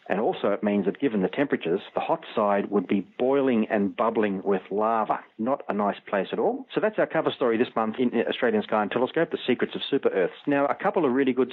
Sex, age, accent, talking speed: male, 40-59, Australian, 245 wpm